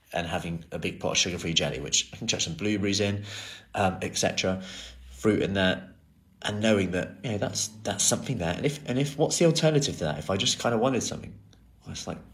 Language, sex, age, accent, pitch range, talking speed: English, male, 30-49, British, 90-110 Hz, 235 wpm